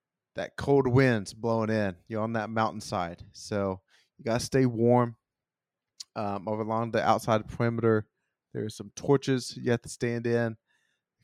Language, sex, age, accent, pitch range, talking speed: English, male, 30-49, American, 105-130 Hz, 150 wpm